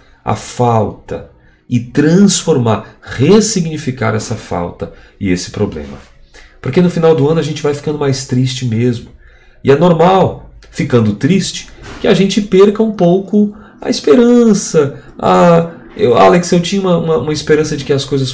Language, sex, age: Portuguese, male, 40-59